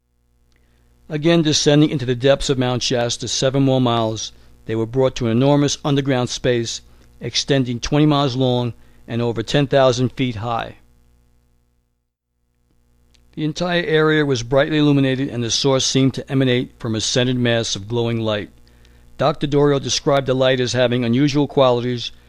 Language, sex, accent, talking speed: English, male, American, 150 wpm